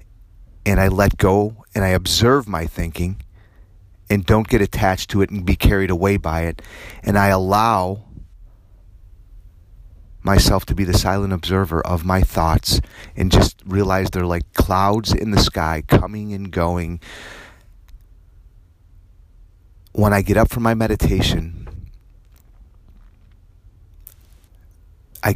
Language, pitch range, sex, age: English, 90-115 Hz, male, 30-49